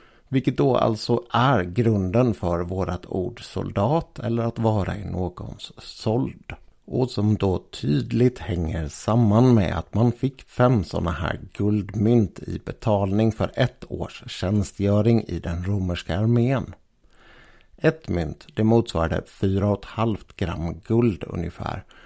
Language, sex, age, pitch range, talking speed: Swedish, male, 60-79, 90-120 Hz, 130 wpm